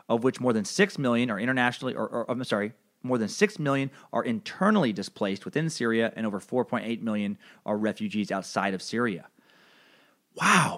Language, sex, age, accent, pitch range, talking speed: English, male, 30-49, American, 115-145 Hz, 175 wpm